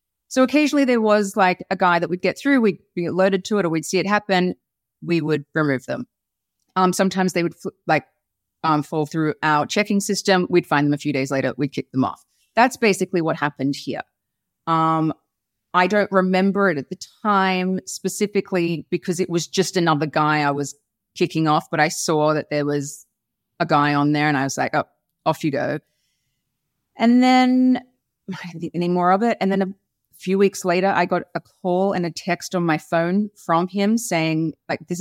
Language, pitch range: English, 155-195 Hz